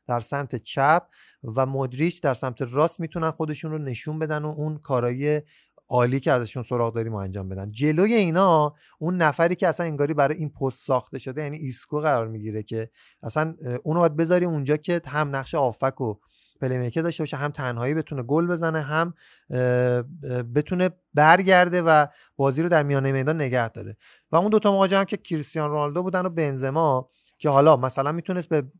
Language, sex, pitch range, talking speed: Persian, male, 130-165 Hz, 175 wpm